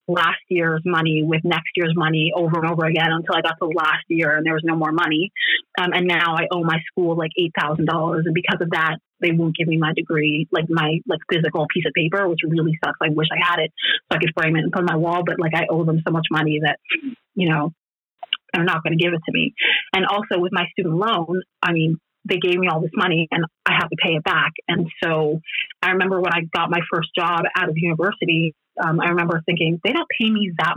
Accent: American